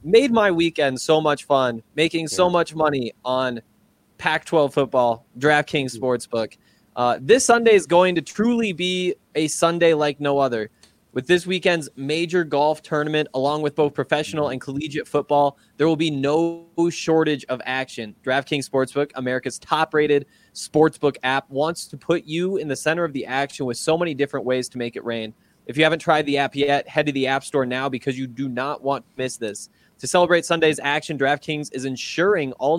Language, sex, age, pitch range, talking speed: English, male, 20-39, 130-160 Hz, 185 wpm